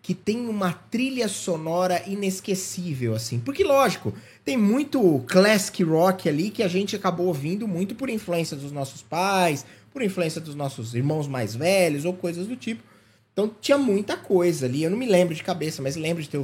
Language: Portuguese